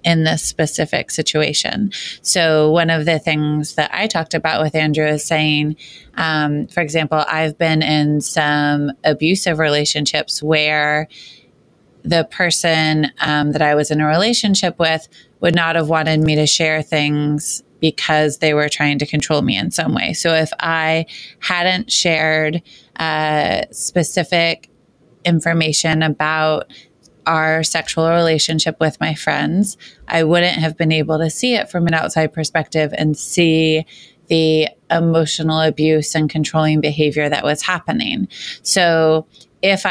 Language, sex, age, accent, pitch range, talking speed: English, female, 20-39, American, 155-165 Hz, 145 wpm